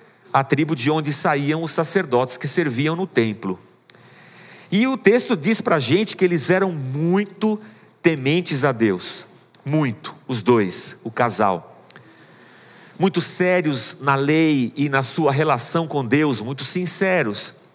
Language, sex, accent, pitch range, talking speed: Portuguese, male, Brazilian, 145-190 Hz, 140 wpm